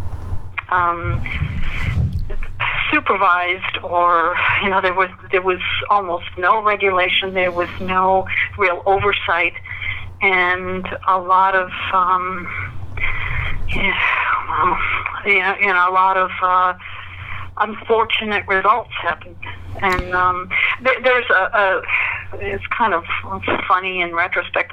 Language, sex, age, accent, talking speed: English, female, 50-69, American, 110 wpm